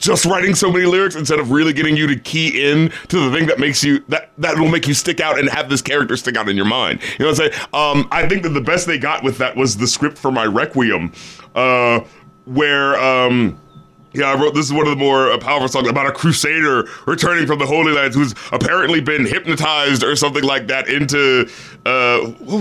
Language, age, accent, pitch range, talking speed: English, 30-49, American, 130-155 Hz, 235 wpm